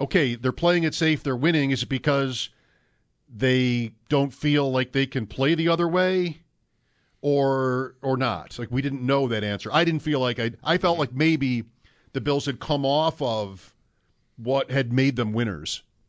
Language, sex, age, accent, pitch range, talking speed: English, male, 50-69, American, 110-145 Hz, 185 wpm